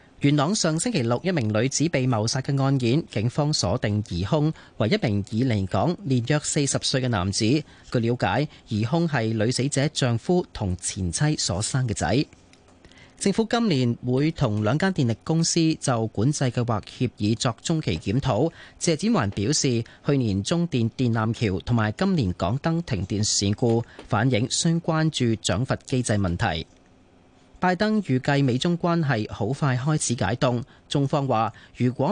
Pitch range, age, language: 110-150 Hz, 30-49, Chinese